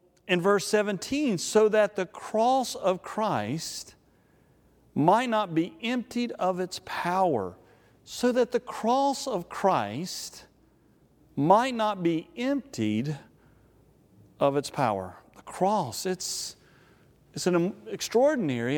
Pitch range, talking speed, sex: 150-225 Hz, 110 wpm, male